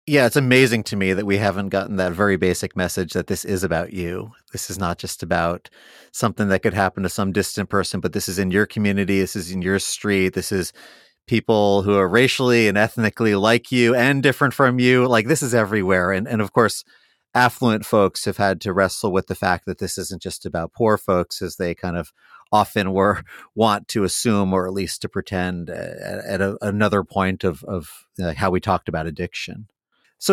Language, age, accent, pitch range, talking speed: English, 30-49, American, 95-125 Hz, 210 wpm